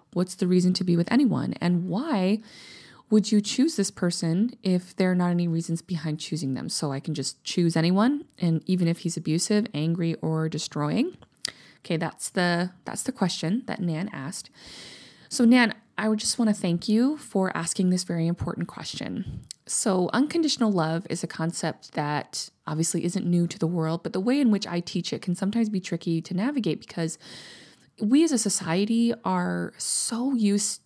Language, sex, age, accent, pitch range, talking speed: English, female, 20-39, American, 170-215 Hz, 185 wpm